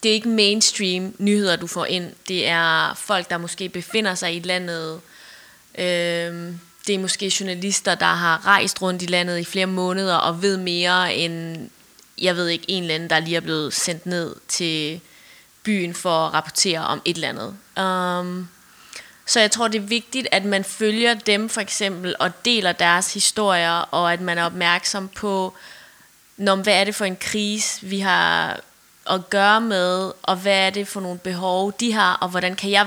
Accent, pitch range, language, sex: native, 175-205 Hz, Danish, female